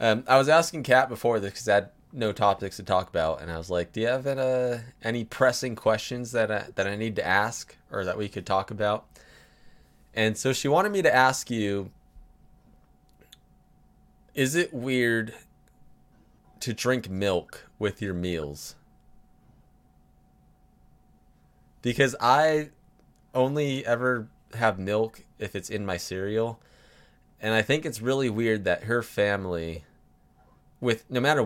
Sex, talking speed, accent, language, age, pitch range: male, 155 wpm, American, English, 20-39, 100-135 Hz